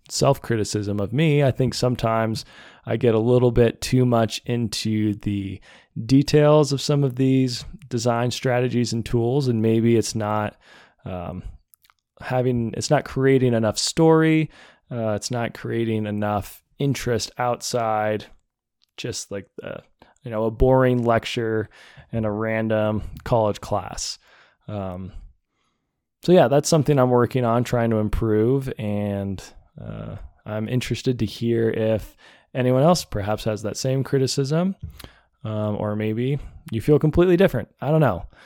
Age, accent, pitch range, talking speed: 20-39, American, 105-130 Hz, 140 wpm